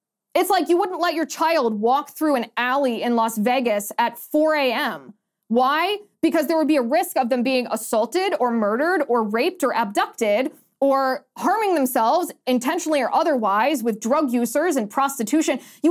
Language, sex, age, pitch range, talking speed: English, female, 20-39, 235-320 Hz, 175 wpm